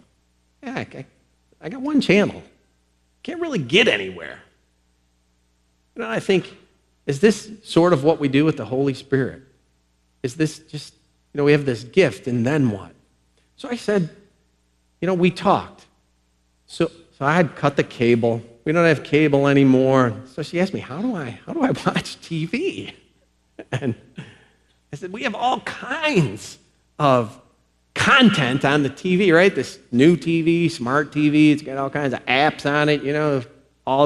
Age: 40-59